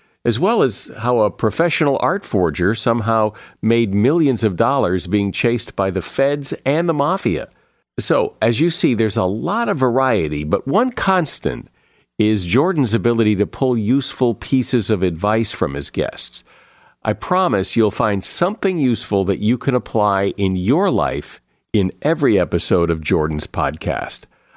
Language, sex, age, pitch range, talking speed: English, male, 50-69, 95-130 Hz, 155 wpm